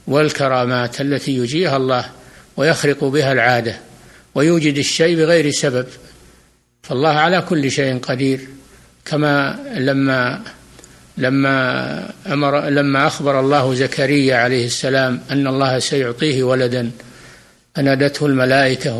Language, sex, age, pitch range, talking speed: Arabic, male, 60-79, 135-160 Hz, 100 wpm